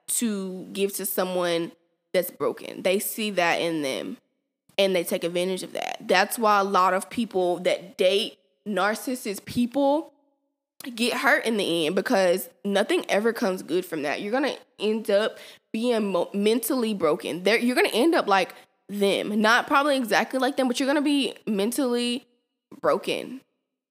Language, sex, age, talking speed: English, female, 20-39, 165 wpm